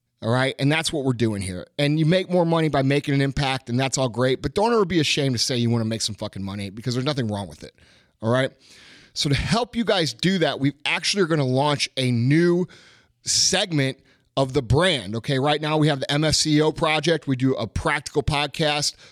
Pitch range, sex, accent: 130-160 Hz, male, American